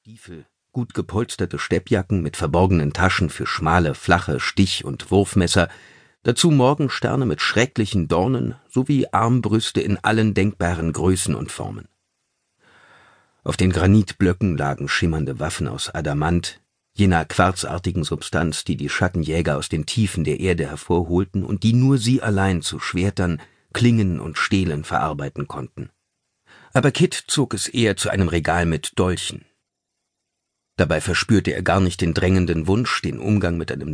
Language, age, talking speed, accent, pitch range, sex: German, 50-69, 140 wpm, German, 85-110 Hz, male